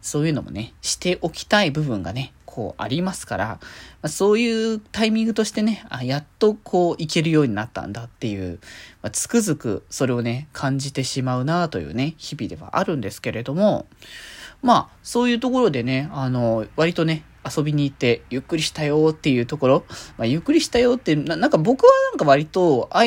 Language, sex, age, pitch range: Japanese, male, 20-39, 135-220 Hz